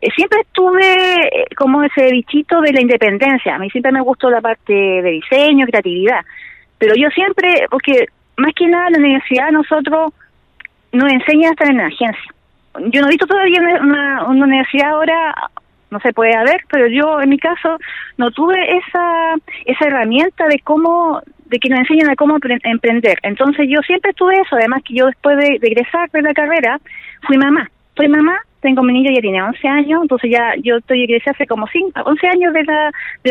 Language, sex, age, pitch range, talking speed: Spanish, female, 30-49, 245-330 Hz, 190 wpm